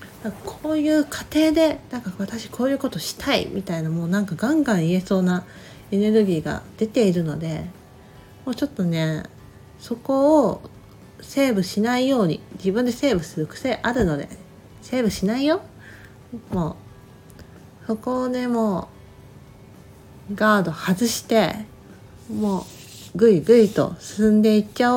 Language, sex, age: Japanese, female, 40-59